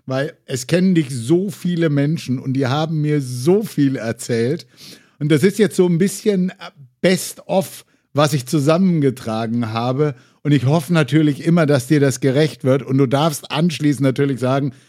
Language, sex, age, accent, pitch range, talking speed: German, male, 60-79, German, 140-180 Hz, 170 wpm